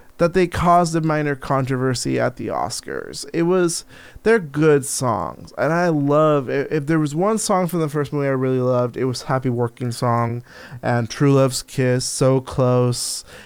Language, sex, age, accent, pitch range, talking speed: English, male, 20-39, American, 130-165 Hz, 185 wpm